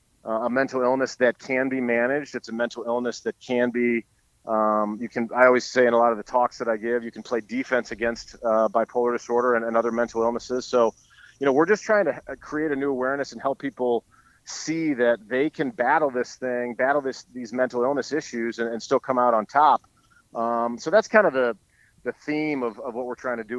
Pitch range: 115-135 Hz